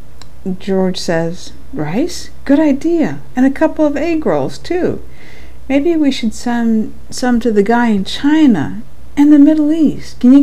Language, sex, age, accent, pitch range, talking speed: English, female, 50-69, American, 165-230 Hz, 160 wpm